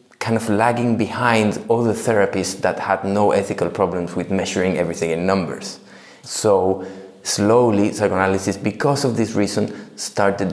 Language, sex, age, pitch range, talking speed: English, male, 30-49, 95-120 Hz, 135 wpm